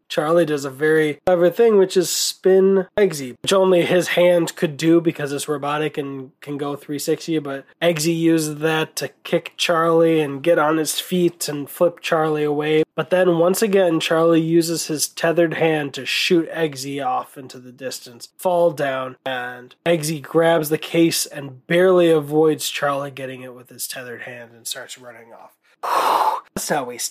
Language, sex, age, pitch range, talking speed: English, male, 20-39, 145-175 Hz, 175 wpm